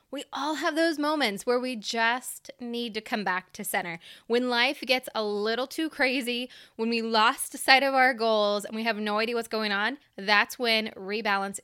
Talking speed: 200 wpm